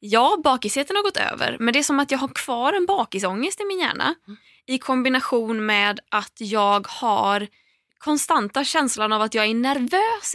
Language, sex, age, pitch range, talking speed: Swedish, female, 20-39, 210-275 Hz, 180 wpm